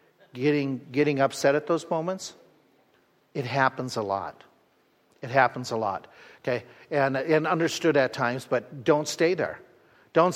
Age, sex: 50-69, male